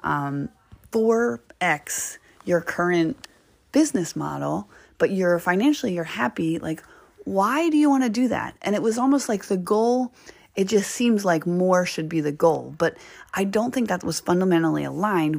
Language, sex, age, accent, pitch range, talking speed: English, female, 30-49, American, 160-230 Hz, 170 wpm